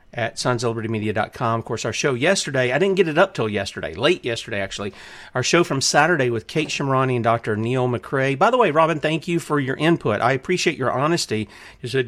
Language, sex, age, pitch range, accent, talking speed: English, male, 40-59, 115-150 Hz, American, 220 wpm